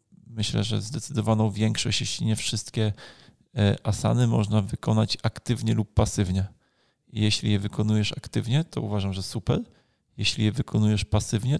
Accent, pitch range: native, 105-115 Hz